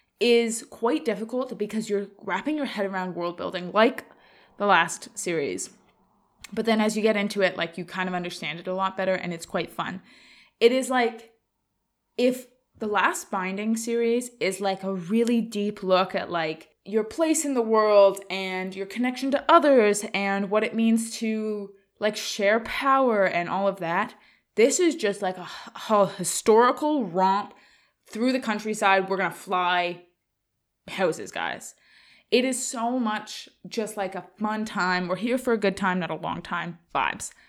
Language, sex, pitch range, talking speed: English, female, 190-230 Hz, 175 wpm